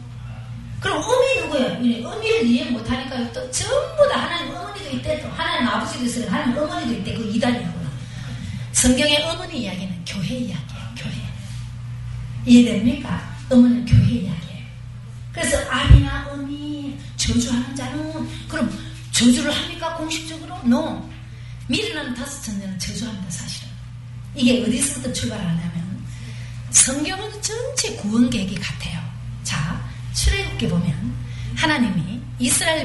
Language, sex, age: Korean, female, 30-49